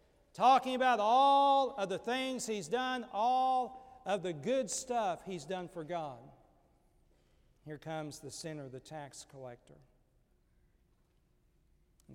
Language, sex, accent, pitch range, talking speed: English, male, American, 170-240 Hz, 125 wpm